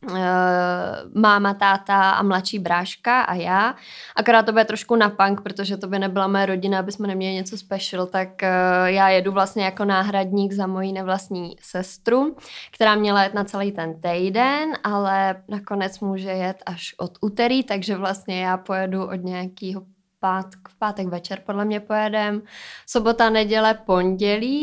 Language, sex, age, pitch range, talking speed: Czech, female, 20-39, 185-225 Hz, 155 wpm